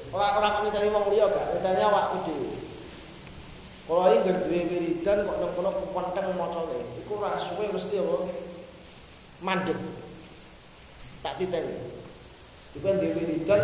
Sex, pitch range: male, 175-230 Hz